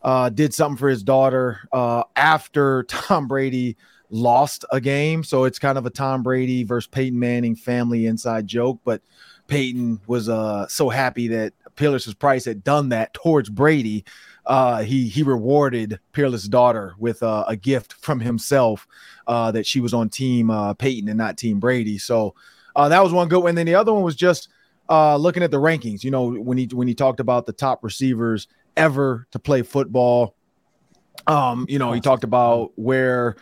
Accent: American